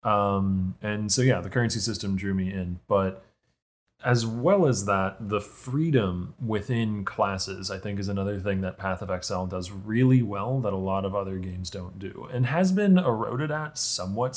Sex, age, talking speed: male, 20-39, 190 wpm